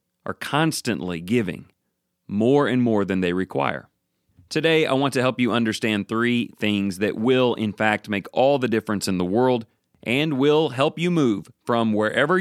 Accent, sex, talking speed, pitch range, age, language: American, male, 175 wpm, 105-135 Hz, 40-59, English